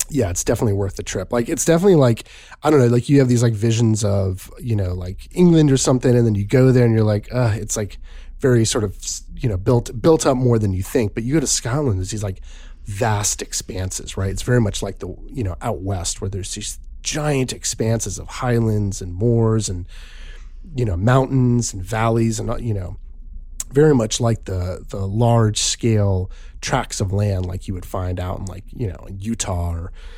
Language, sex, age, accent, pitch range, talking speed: English, male, 30-49, American, 95-125 Hz, 215 wpm